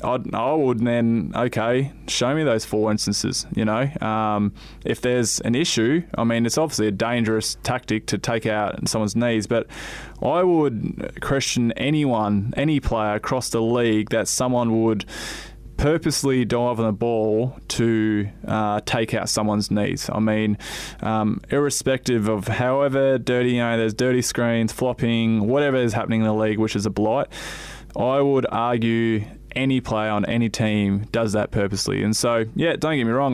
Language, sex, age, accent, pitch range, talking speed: English, male, 20-39, Australian, 110-125 Hz, 165 wpm